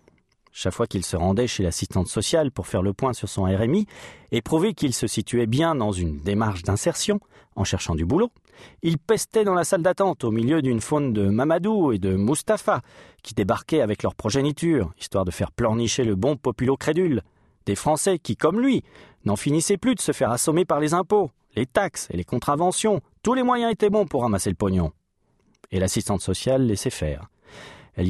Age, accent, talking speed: 40-59, French, 195 wpm